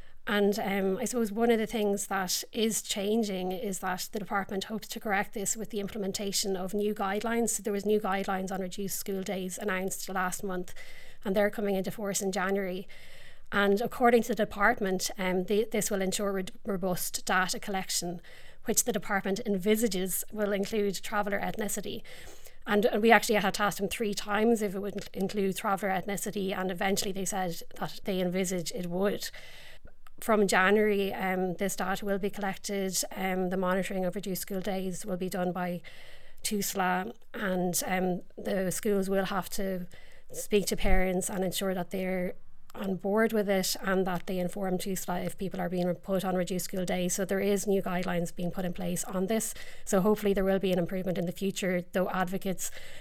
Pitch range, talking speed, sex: 185-205 Hz, 185 wpm, female